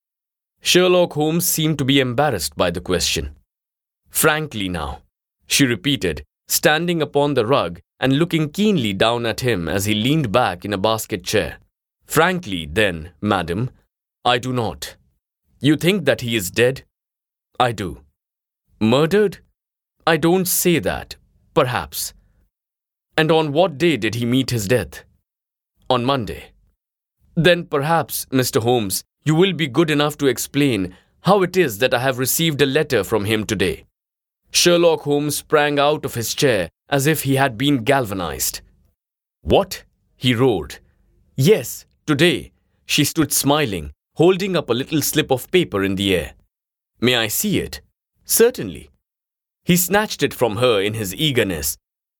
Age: 20-39